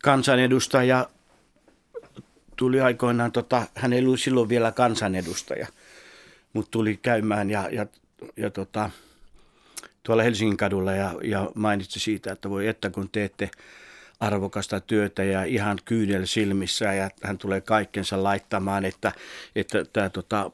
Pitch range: 100-115 Hz